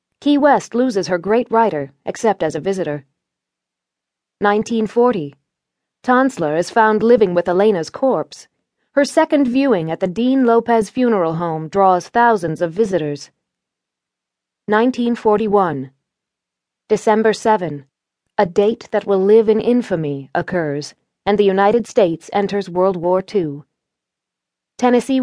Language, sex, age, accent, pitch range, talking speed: English, female, 30-49, American, 170-235 Hz, 120 wpm